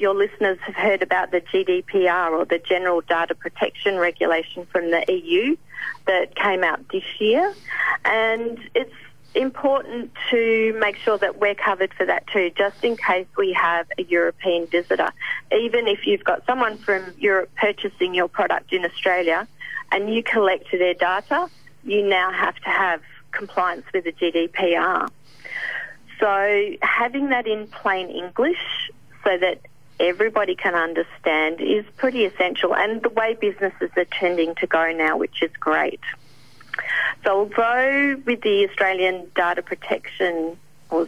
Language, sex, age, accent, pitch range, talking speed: English, female, 40-59, Australian, 180-230 Hz, 150 wpm